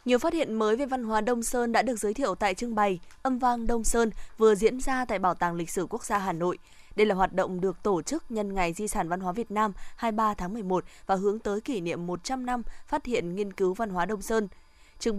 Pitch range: 185-235 Hz